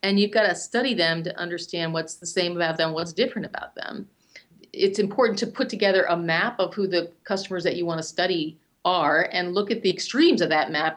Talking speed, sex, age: 230 wpm, female, 40-59